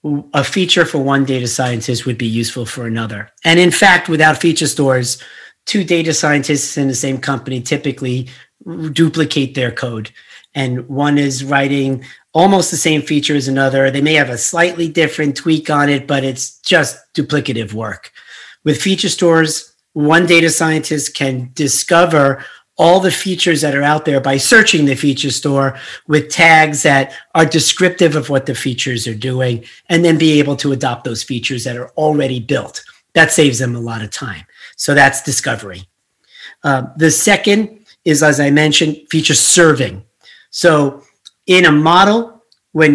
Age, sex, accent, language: 40-59, male, American, English